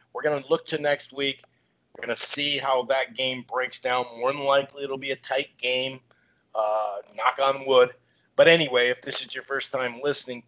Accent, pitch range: American, 125-145 Hz